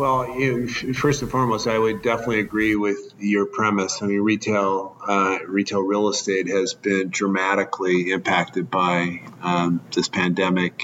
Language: English